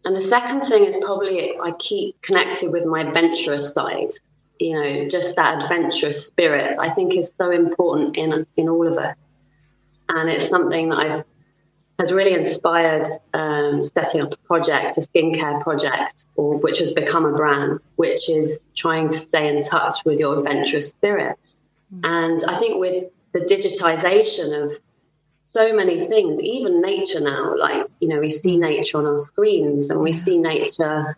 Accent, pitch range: British, 155-185 Hz